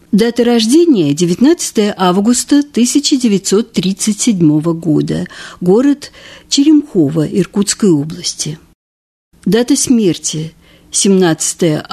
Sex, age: female, 50-69